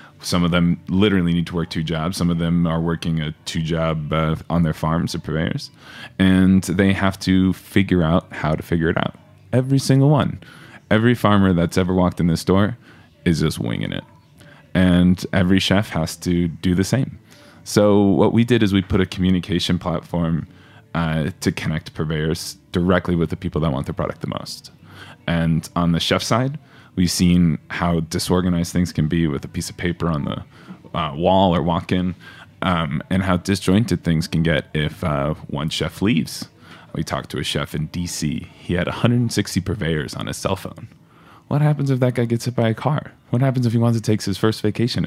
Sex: male